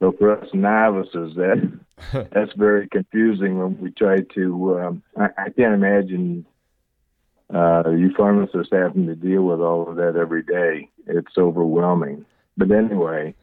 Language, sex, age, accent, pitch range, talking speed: English, male, 50-69, American, 85-100 Hz, 140 wpm